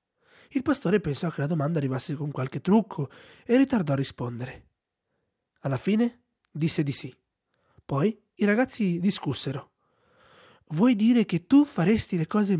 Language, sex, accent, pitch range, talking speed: Italian, male, native, 140-205 Hz, 145 wpm